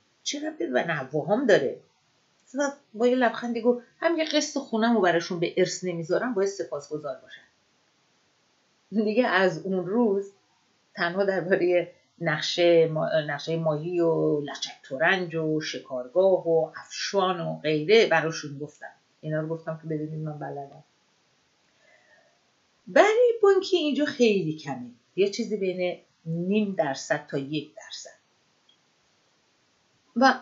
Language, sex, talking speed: Persian, female, 125 wpm